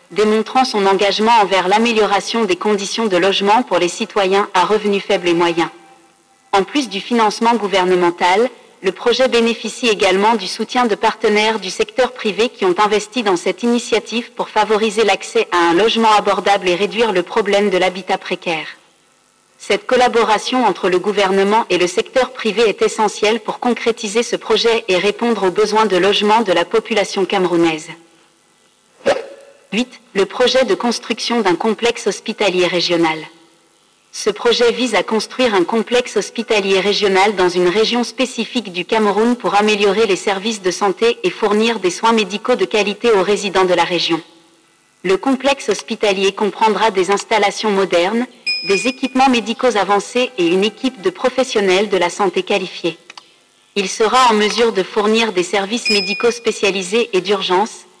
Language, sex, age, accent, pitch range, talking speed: English, female, 40-59, French, 190-230 Hz, 155 wpm